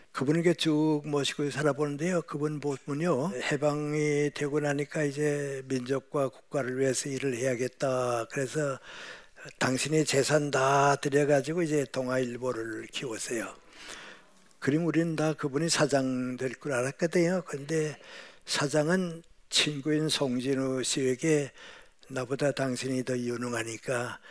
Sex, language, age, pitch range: male, Korean, 60-79, 130-150 Hz